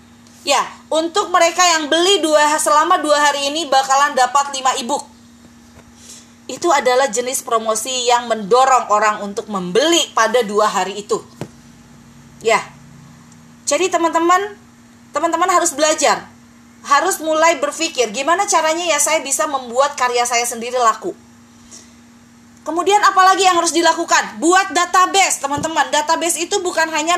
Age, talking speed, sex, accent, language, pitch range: 30-49, 130 wpm, female, native, Indonesian, 250-340 Hz